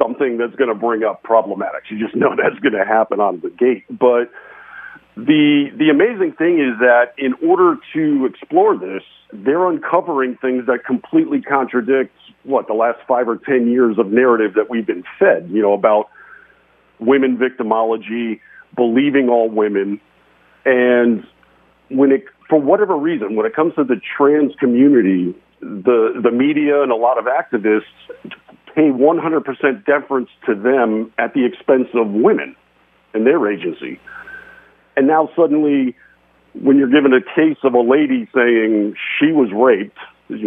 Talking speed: 155 wpm